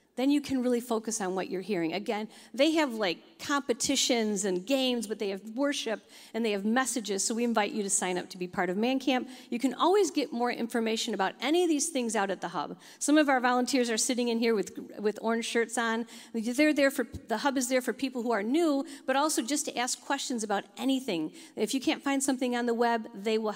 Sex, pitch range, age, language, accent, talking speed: female, 210-275 Hz, 50-69, English, American, 240 wpm